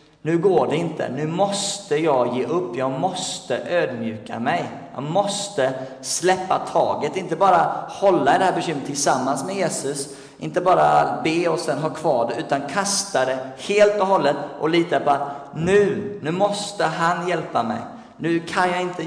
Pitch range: 130-175 Hz